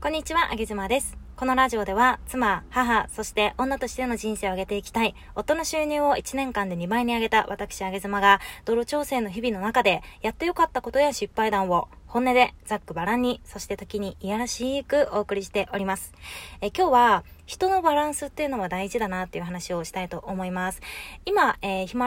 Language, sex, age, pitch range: Japanese, female, 20-39, 195-255 Hz